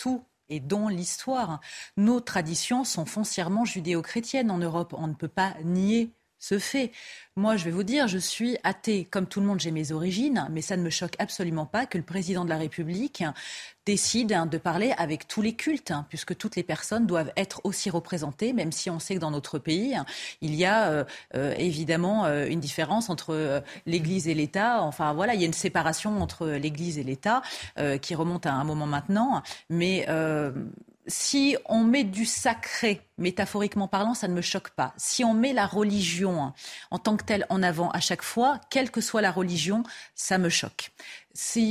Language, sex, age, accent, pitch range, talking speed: French, female, 30-49, French, 160-215 Hz, 190 wpm